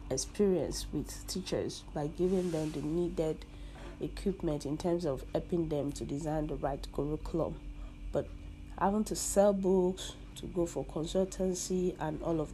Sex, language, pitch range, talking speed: female, English, 150-180 Hz, 150 wpm